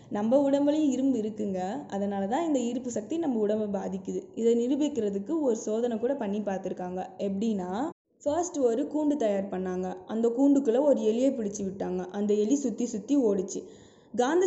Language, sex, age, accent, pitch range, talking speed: Tamil, female, 20-39, native, 200-260 Hz, 155 wpm